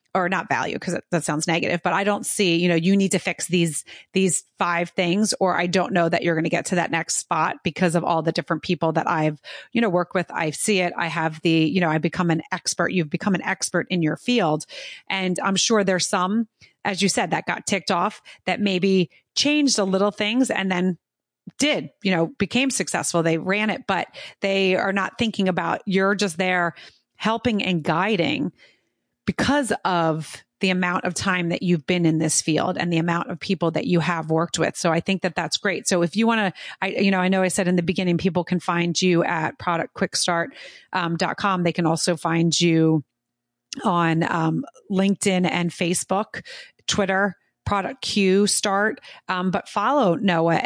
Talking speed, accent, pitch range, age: 205 wpm, American, 170-195 Hz, 30-49